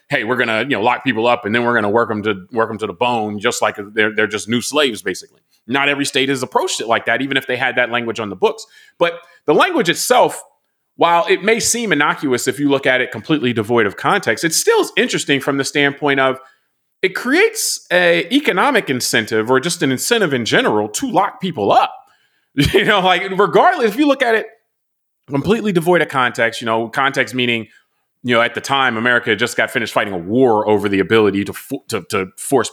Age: 30-49